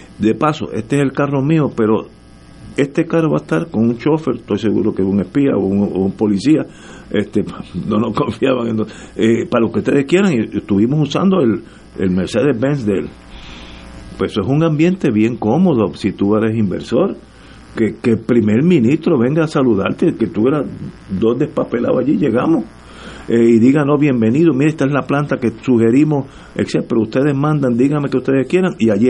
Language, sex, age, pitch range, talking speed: Spanish, male, 50-69, 105-150 Hz, 190 wpm